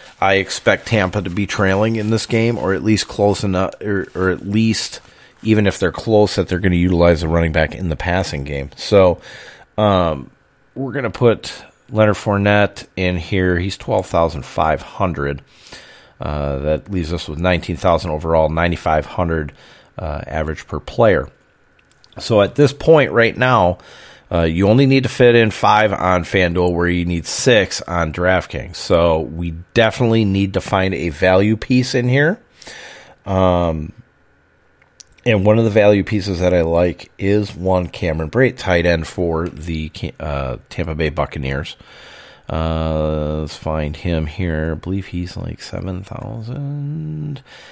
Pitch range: 80-105 Hz